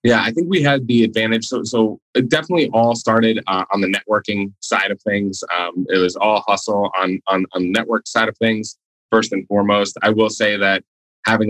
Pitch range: 95-115 Hz